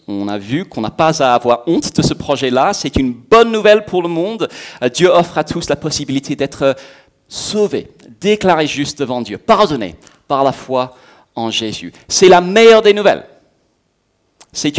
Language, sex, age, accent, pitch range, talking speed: French, male, 40-59, French, 105-160 Hz, 175 wpm